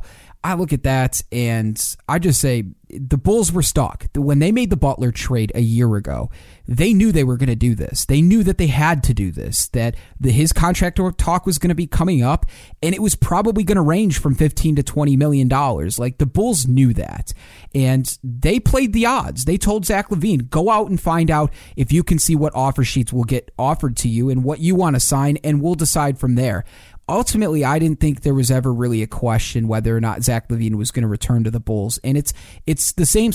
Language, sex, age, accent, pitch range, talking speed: English, male, 30-49, American, 120-160 Hz, 230 wpm